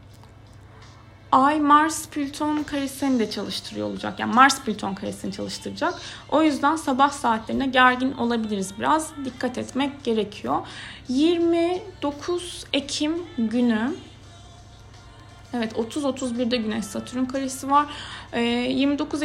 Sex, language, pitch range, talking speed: female, Turkish, 220-285 Hz, 100 wpm